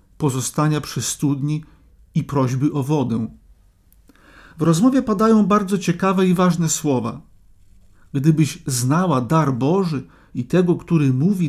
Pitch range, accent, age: 115-180 Hz, native, 50-69